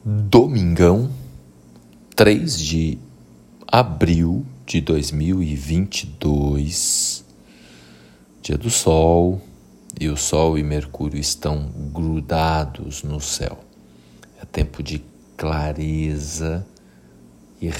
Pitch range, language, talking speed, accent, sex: 65-80 Hz, Portuguese, 80 wpm, Brazilian, male